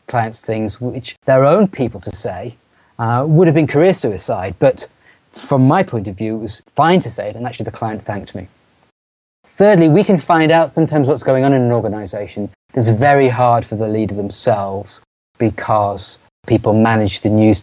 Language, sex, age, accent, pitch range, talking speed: English, male, 30-49, British, 110-140 Hz, 190 wpm